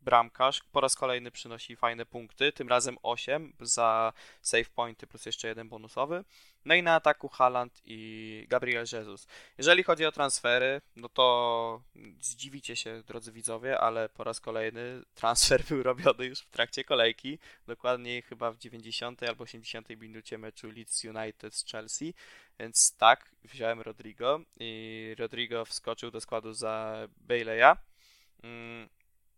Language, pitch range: Polish, 115-140 Hz